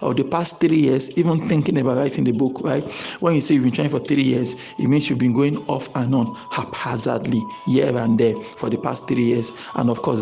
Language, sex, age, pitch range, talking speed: English, male, 50-69, 125-160 Hz, 240 wpm